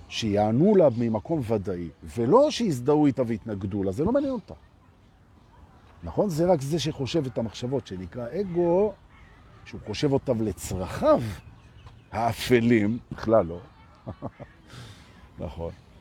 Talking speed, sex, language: 110 wpm, male, Hebrew